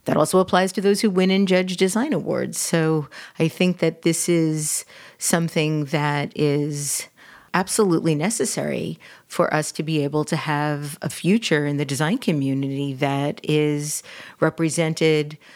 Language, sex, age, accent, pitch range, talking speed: English, female, 40-59, American, 145-170 Hz, 145 wpm